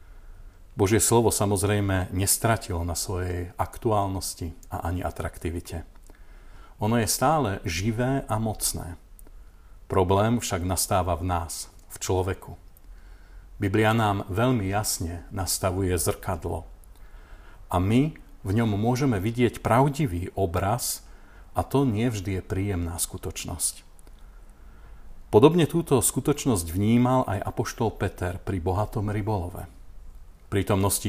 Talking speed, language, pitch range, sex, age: 105 wpm, Slovak, 90-110 Hz, male, 40-59